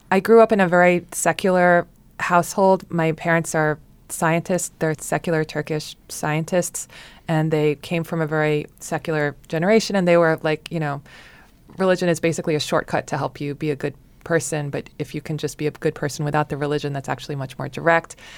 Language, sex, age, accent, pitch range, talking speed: English, female, 20-39, American, 155-185 Hz, 195 wpm